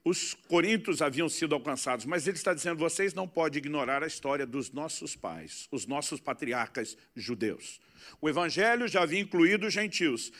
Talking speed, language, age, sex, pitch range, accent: 165 wpm, Portuguese, 50-69, male, 145-205 Hz, Brazilian